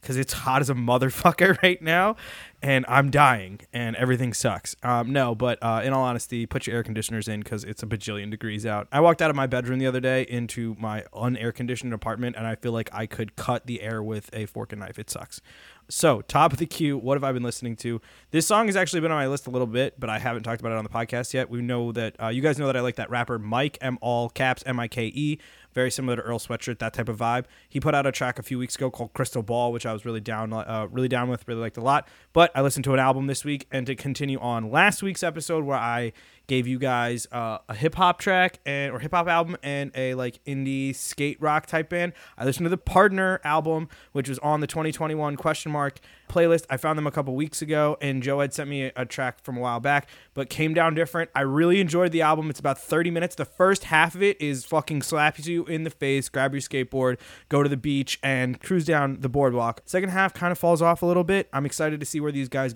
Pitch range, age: 120-155 Hz, 20-39